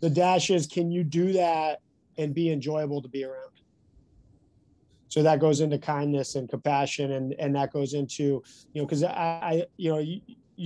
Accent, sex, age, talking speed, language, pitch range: American, male, 20-39, 185 wpm, English, 145-165 Hz